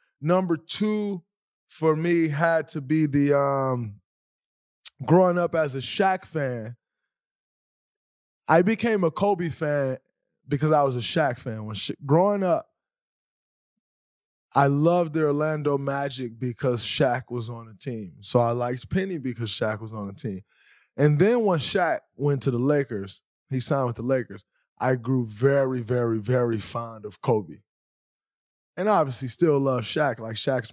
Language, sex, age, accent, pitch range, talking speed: English, male, 20-39, American, 125-170 Hz, 150 wpm